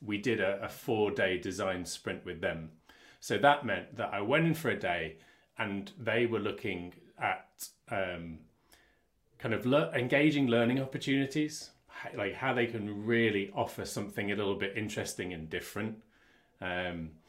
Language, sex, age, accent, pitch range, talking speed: English, male, 30-49, British, 90-120 Hz, 155 wpm